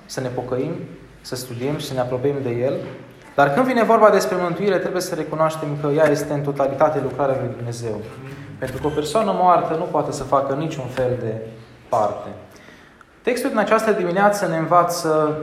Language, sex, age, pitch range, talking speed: Romanian, male, 20-39, 130-170 Hz, 185 wpm